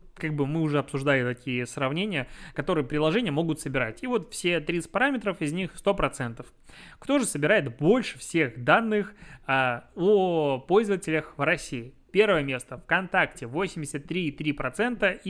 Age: 20-39